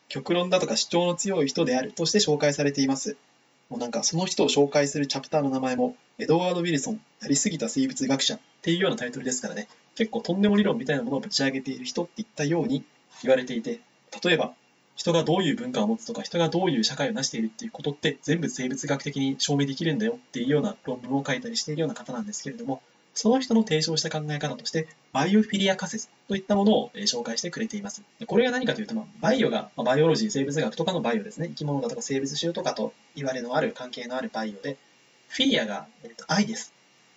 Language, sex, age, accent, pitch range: Japanese, male, 20-39, native, 145-220 Hz